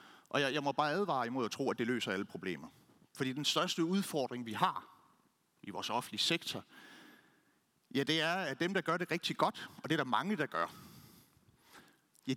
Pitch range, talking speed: 125-165 Hz, 205 wpm